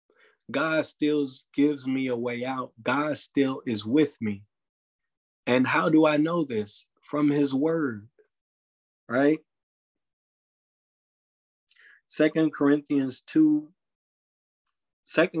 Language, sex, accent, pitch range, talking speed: English, male, American, 120-155 Hz, 95 wpm